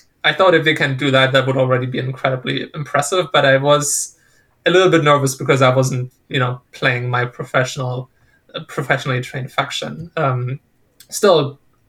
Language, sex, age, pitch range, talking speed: English, male, 20-39, 130-150 Hz, 170 wpm